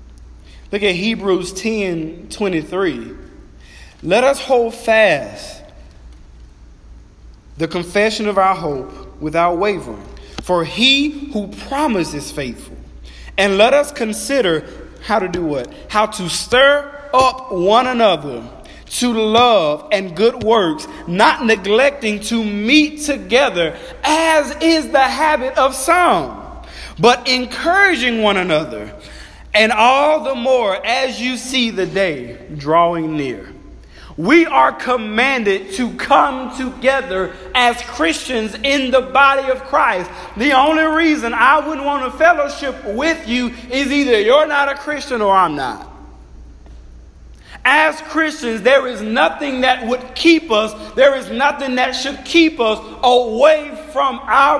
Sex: male